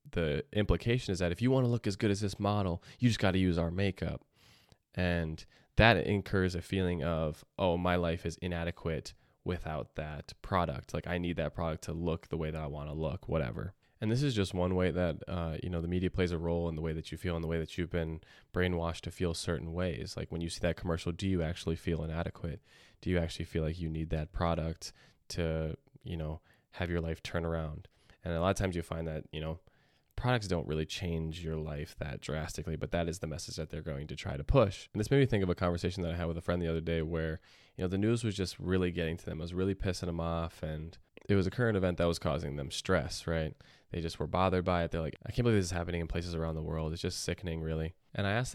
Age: 20-39